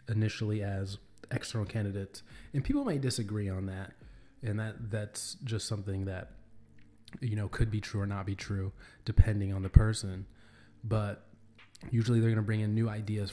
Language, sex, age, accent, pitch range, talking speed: English, male, 20-39, American, 100-115 Hz, 165 wpm